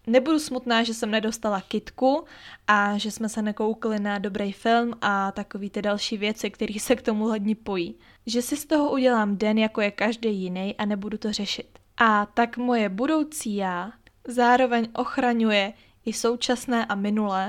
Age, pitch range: 20-39, 210-240 Hz